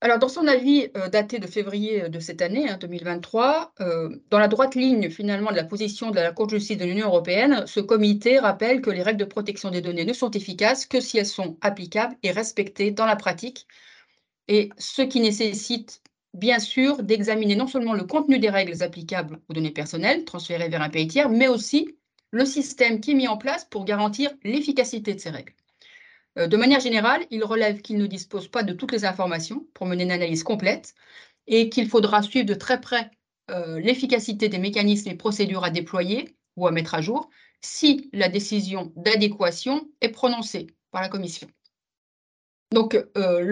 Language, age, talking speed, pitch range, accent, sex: French, 30-49, 190 wpm, 190-245 Hz, French, female